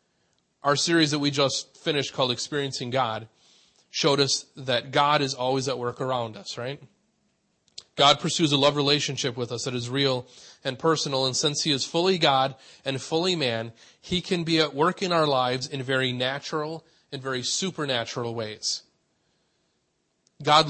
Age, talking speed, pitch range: 30-49, 165 wpm, 125-150 Hz